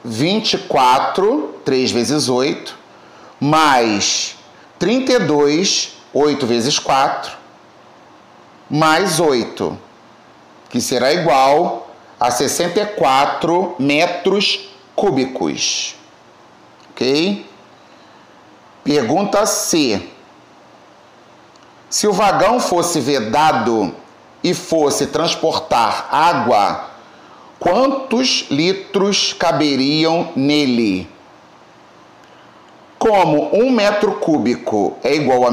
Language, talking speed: Portuguese, 70 wpm